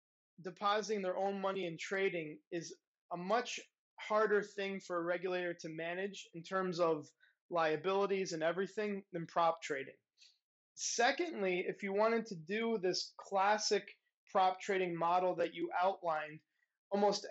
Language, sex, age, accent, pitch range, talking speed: English, male, 20-39, American, 175-205 Hz, 140 wpm